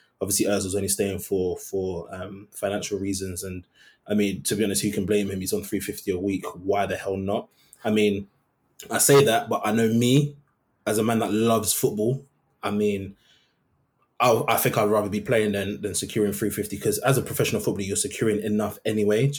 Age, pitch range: 20-39, 100-110 Hz